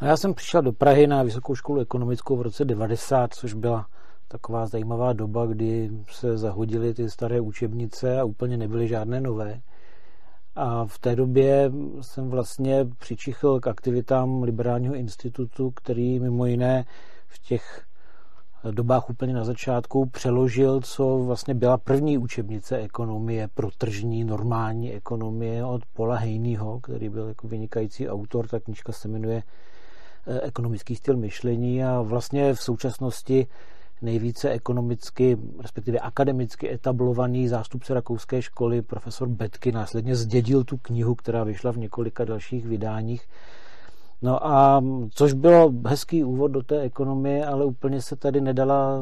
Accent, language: native, Czech